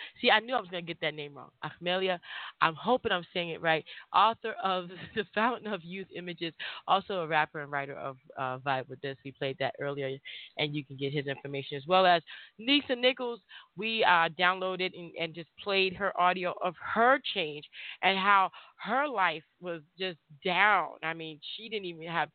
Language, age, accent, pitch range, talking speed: English, 30-49, American, 160-215 Hz, 200 wpm